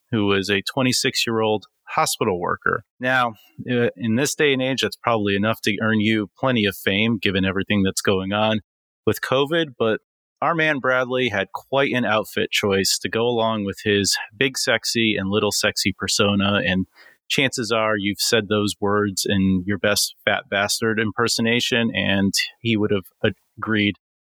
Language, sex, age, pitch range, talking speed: English, male, 30-49, 100-130 Hz, 165 wpm